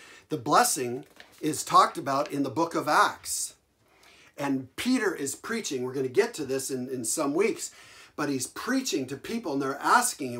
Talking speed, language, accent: 185 wpm, English, American